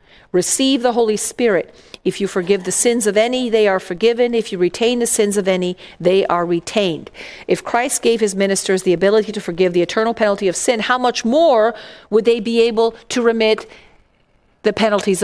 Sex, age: female, 50-69